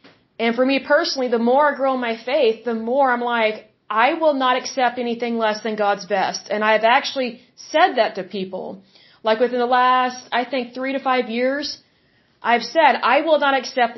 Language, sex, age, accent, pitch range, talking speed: English, female, 30-49, American, 225-270 Hz, 200 wpm